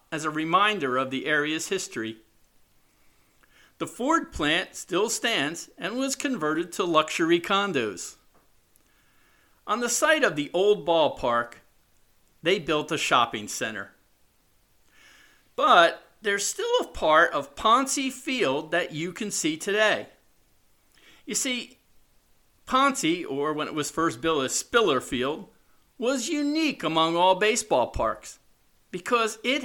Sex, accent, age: male, American, 50-69